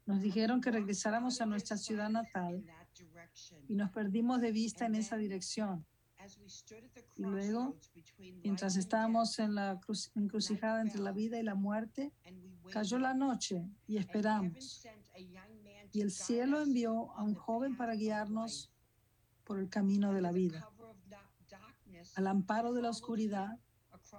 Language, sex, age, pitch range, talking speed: English, female, 50-69, 190-225 Hz, 135 wpm